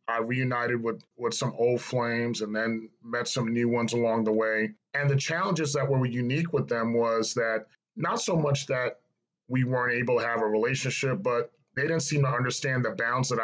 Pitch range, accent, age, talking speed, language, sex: 110-130 Hz, American, 30-49, 205 wpm, English, male